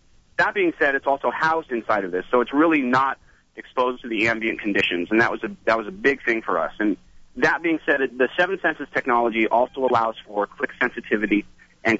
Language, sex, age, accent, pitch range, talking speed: English, male, 40-59, American, 115-145 Hz, 205 wpm